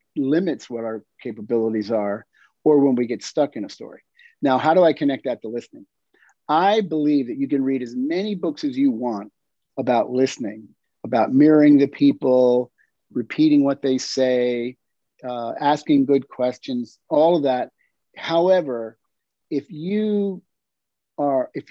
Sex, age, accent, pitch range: male, 50-69, American, 125-175 Hz